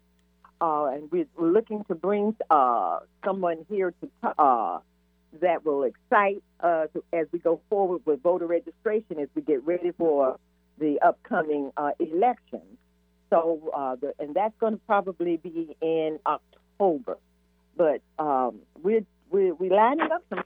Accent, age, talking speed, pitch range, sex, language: American, 50-69, 145 wpm, 135-205 Hz, female, English